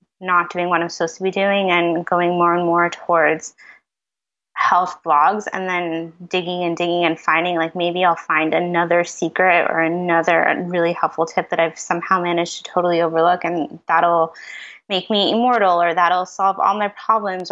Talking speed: 180 wpm